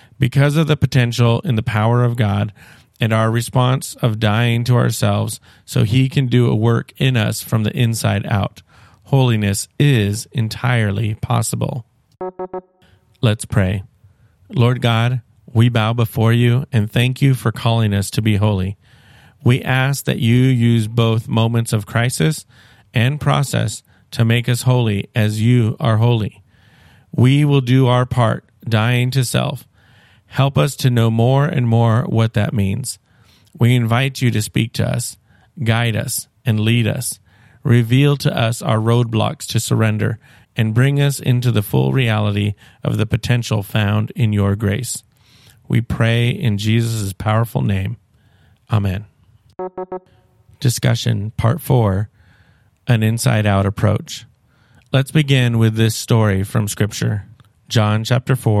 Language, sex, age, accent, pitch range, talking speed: English, male, 40-59, American, 110-125 Hz, 145 wpm